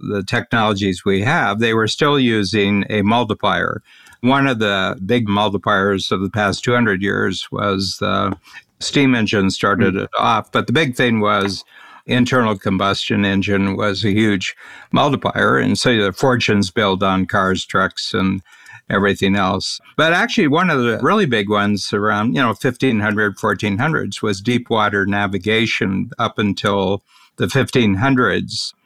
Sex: male